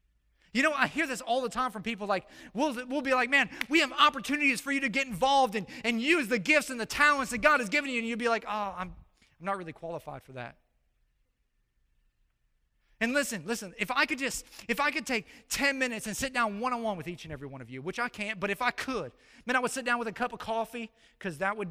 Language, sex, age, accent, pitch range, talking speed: English, male, 30-49, American, 200-270 Hz, 255 wpm